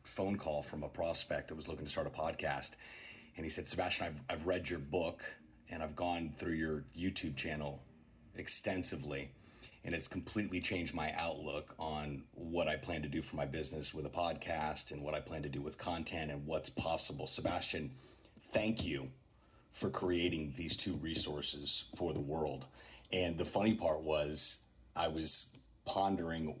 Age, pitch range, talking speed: 30-49, 80-100 Hz, 175 wpm